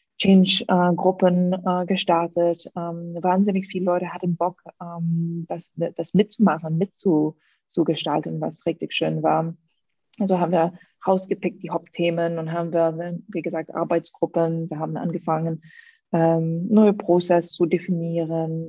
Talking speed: 125 wpm